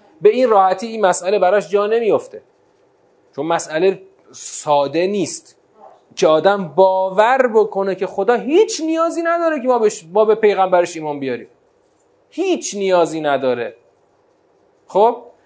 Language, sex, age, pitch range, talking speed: Persian, male, 30-49, 140-230 Hz, 125 wpm